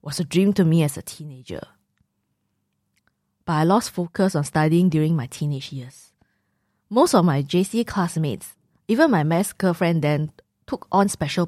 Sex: female